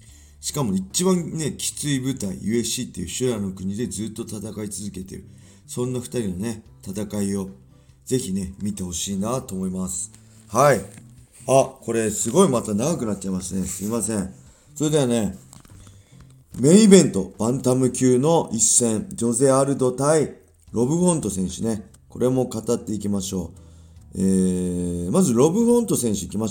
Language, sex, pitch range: Japanese, male, 95-130 Hz